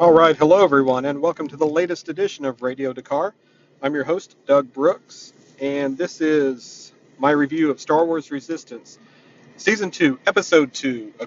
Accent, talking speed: American, 170 wpm